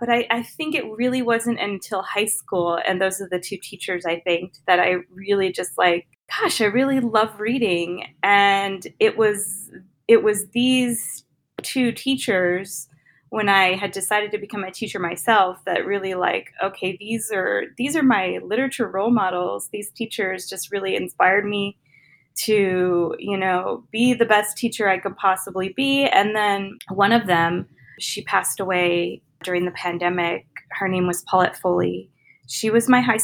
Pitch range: 185-230 Hz